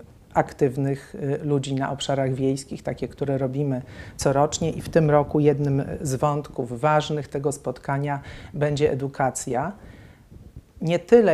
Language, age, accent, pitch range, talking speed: Polish, 50-69, native, 135-155 Hz, 120 wpm